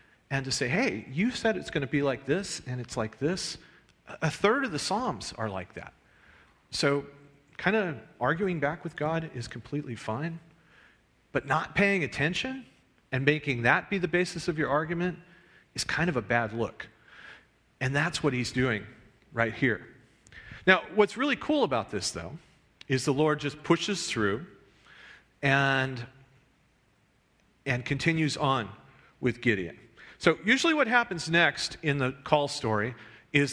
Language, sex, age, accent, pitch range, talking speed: English, male, 40-59, American, 120-160 Hz, 160 wpm